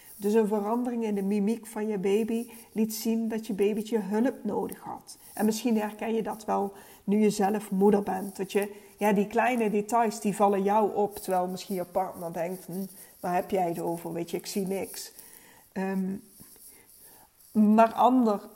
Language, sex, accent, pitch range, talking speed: Dutch, female, Dutch, 190-220 Hz, 185 wpm